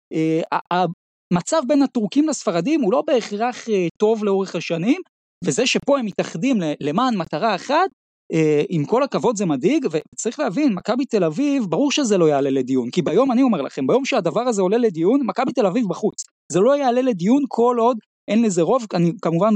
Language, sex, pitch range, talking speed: Hebrew, male, 175-240 Hz, 180 wpm